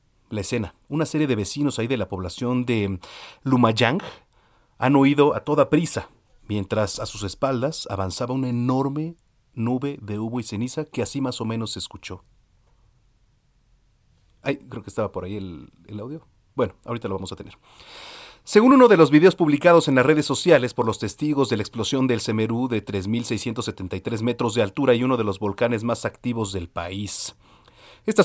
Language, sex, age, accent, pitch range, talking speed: Spanish, male, 40-59, Mexican, 105-140 Hz, 180 wpm